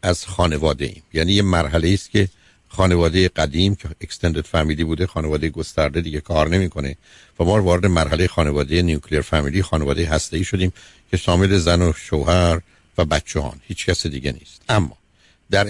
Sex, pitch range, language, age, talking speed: male, 80-95 Hz, Persian, 60-79, 165 wpm